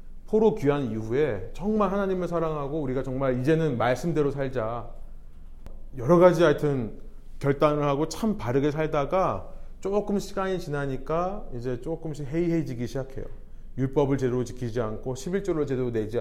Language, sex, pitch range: Korean, male, 110-155 Hz